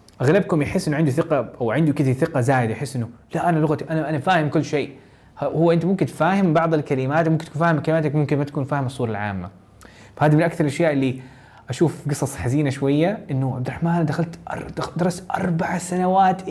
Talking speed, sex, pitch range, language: 205 wpm, male, 125-165 Hz, Arabic